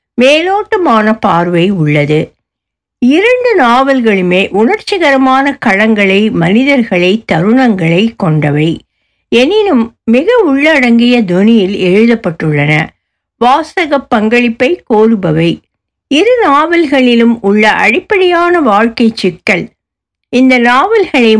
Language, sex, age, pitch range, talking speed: Tamil, female, 60-79, 195-280 Hz, 60 wpm